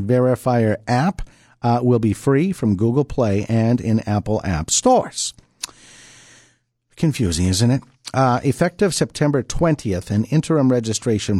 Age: 50-69